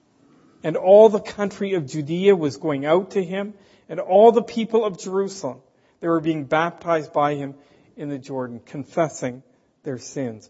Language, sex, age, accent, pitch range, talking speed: English, male, 50-69, American, 140-195 Hz, 165 wpm